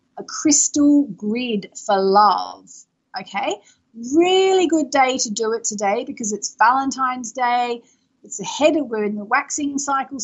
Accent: Australian